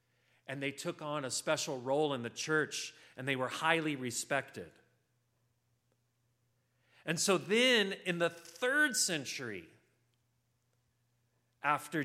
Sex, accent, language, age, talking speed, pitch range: male, American, English, 40-59, 115 wpm, 120-165 Hz